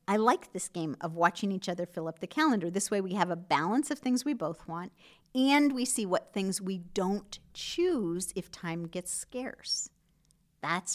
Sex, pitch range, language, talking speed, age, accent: female, 170-230 Hz, English, 195 wpm, 50-69, American